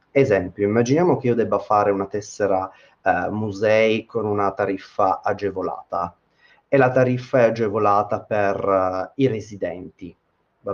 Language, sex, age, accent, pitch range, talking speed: Italian, male, 30-49, native, 100-125 Hz, 130 wpm